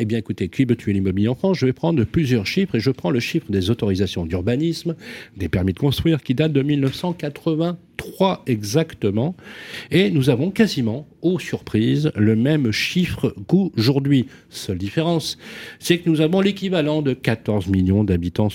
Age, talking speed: 40-59, 170 wpm